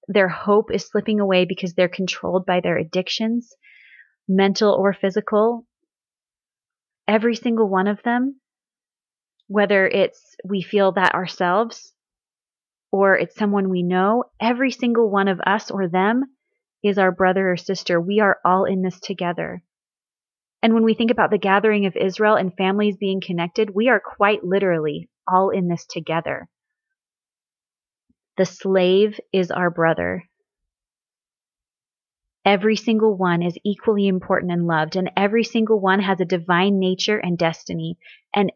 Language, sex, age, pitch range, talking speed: English, female, 30-49, 180-215 Hz, 145 wpm